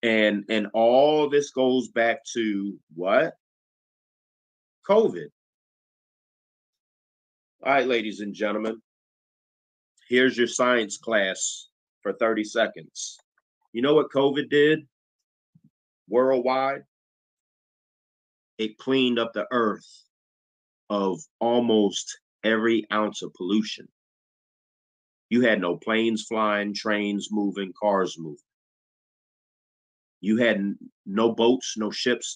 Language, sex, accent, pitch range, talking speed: English, male, American, 100-125 Hz, 100 wpm